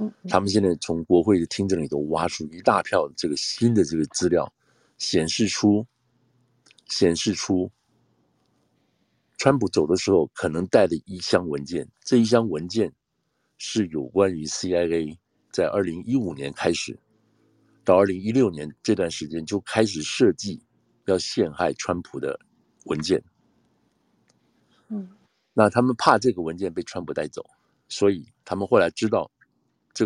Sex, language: male, Chinese